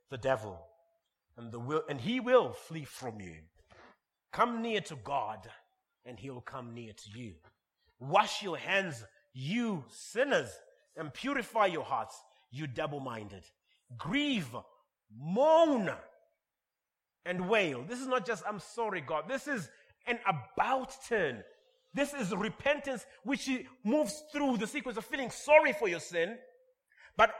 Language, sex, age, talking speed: English, male, 30-49, 135 wpm